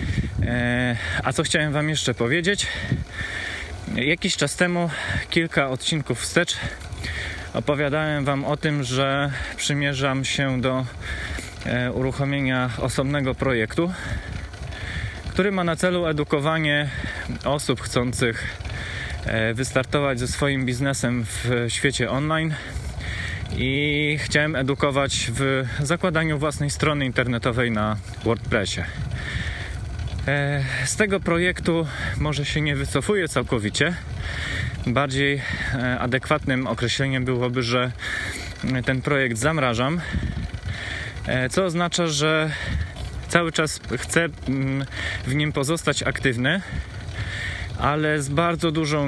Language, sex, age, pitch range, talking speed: Polish, male, 20-39, 115-145 Hz, 95 wpm